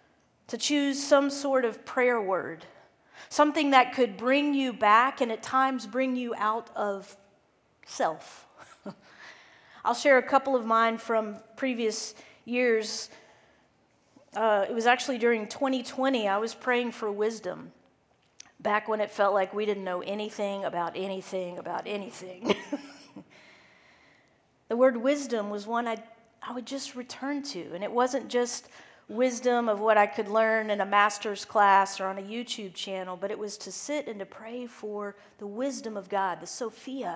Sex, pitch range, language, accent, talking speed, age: female, 205-250 Hz, English, American, 160 wpm, 40-59